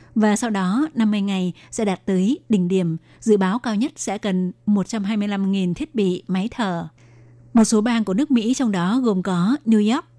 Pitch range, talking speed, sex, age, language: 185-220 Hz, 195 wpm, female, 20-39, Vietnamese